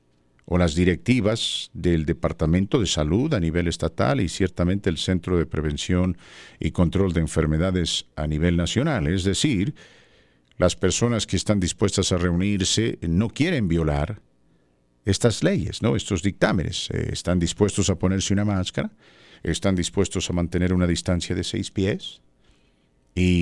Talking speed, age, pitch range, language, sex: 145 wpm, 50-69, 80-105 Hz, English, male